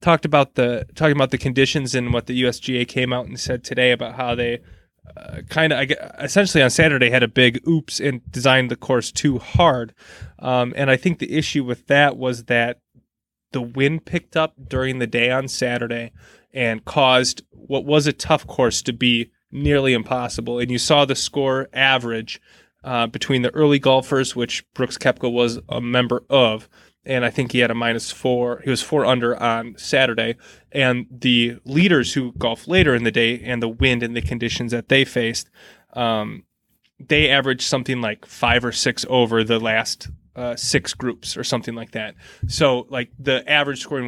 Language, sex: English, male